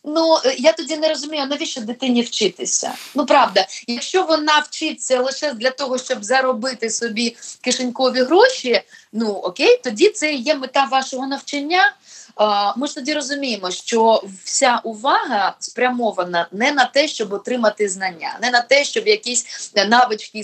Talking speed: 145 wpm